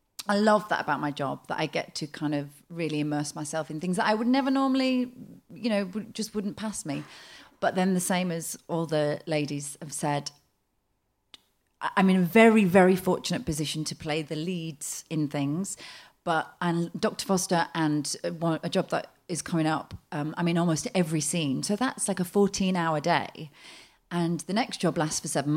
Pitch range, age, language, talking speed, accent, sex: 155-200 Hz, 30-49, English, 190 wpm, British, female